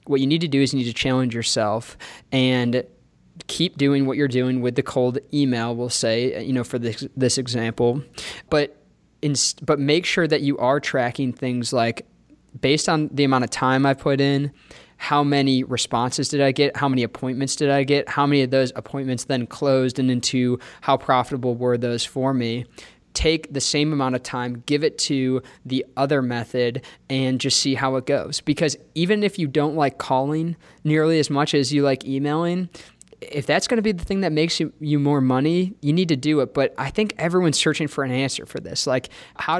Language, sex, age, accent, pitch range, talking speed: English, male, 20-39, American, 130-150 Hz, 210 wpm